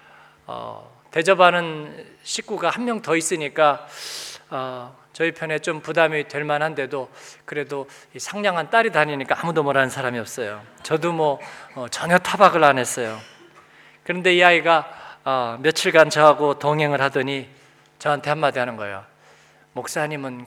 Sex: male